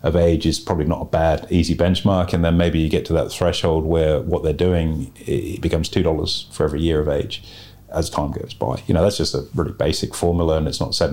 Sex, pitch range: male, 80-90 Hz